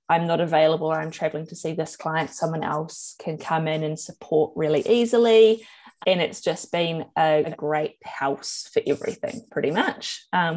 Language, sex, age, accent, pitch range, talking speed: English, female, 20-39, Australian, 160-215 Hz, 170 wpm